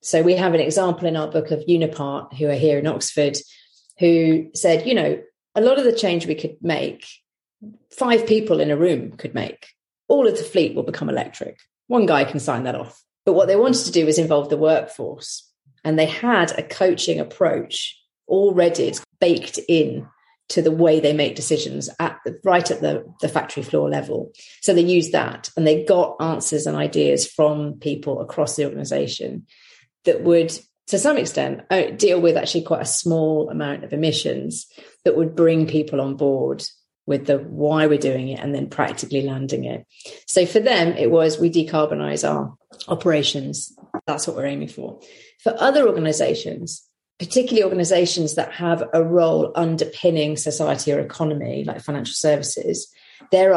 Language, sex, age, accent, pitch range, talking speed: English, female, 40-59, British, 145-170 Hz, 175 wpm